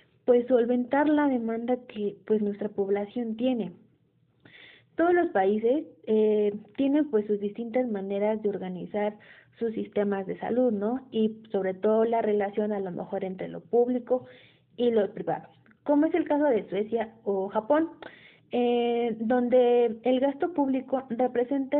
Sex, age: female, 20-39